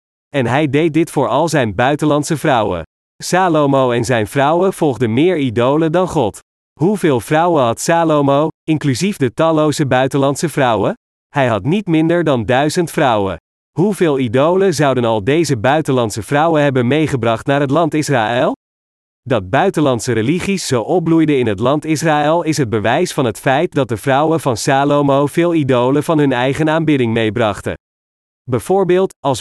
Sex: male